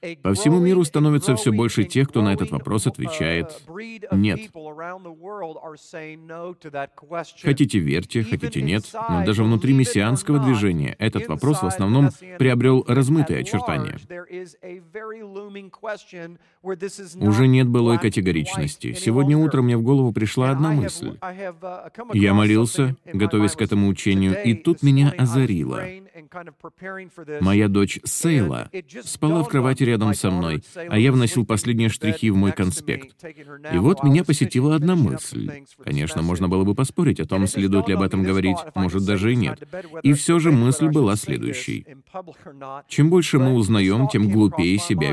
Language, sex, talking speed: Russian, male, 135 wpm